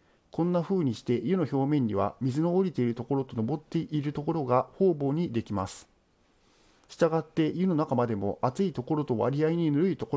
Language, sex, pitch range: Japanese, male, 120-160 Hz